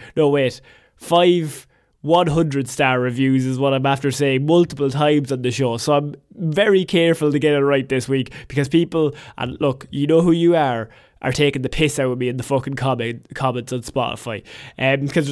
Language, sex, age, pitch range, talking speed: English, male, 20-39, 135-170 Hz, 190 wpm